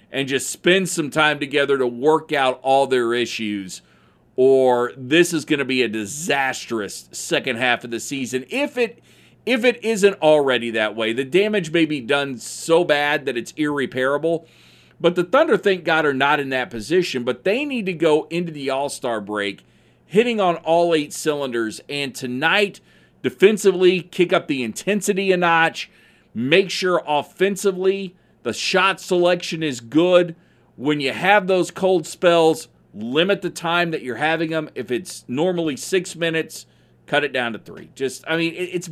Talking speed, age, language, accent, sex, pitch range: 170 wpm, 40-59, English, American, male, 125-175 Hz